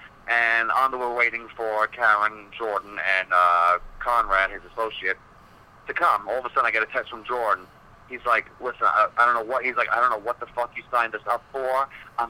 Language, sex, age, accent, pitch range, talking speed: English, male, 40-59, American, 115-150 Hz, 230 wpm